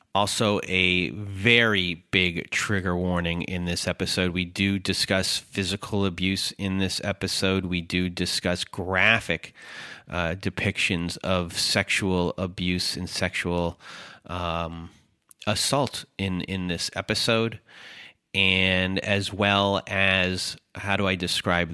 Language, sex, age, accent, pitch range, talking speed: English, male, 30-49, American, 90-100 Hz, 115 wpm